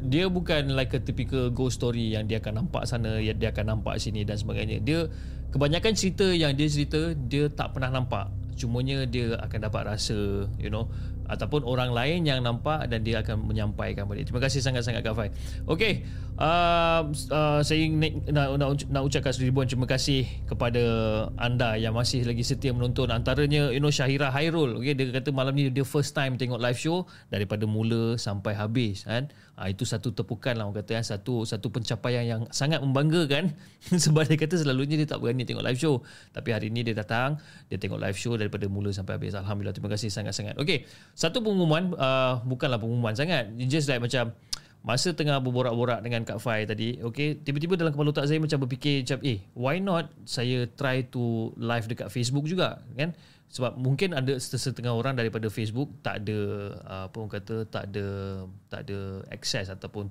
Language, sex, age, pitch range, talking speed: Malay, male, 20-39, 110-140 Hz, 185 wpm